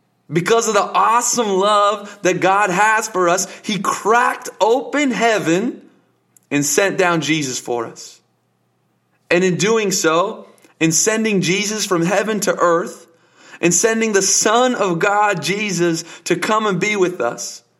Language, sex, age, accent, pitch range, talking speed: English, male, 30-49, American, 140-200 Hz, 150 wpm